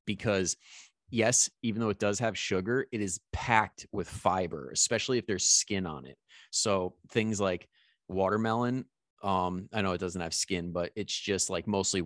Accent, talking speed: American, 175 wpm